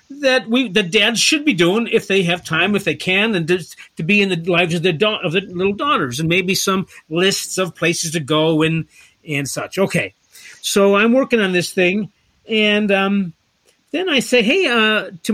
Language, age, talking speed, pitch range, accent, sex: English, 50-69, 215 wpm, 180-245 Hz, American, male